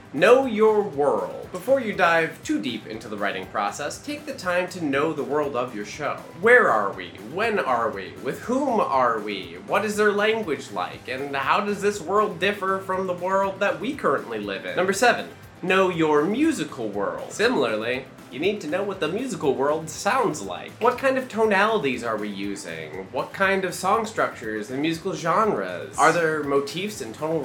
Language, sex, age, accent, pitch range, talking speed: English, male, 20-39, American, 135-205 Hz, 190 wpm